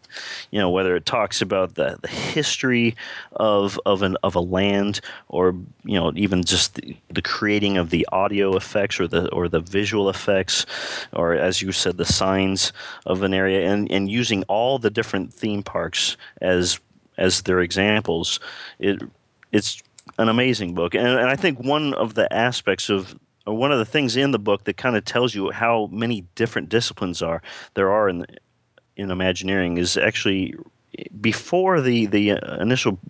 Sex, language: male, English